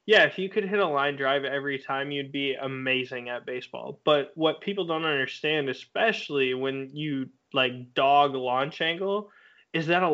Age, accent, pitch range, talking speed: 20-39, American, 130-150 Hz, 180 wpm